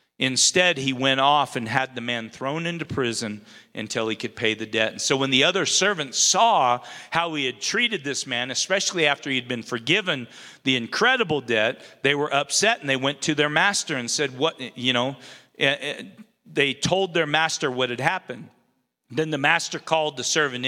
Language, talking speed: English, 190 wpm